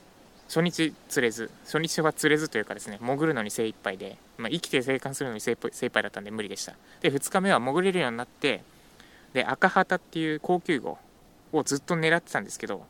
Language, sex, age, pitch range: Japanese, male, 20-39, 120-165 Hz